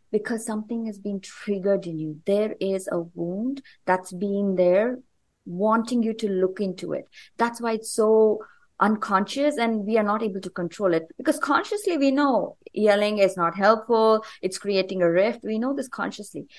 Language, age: English, 30-49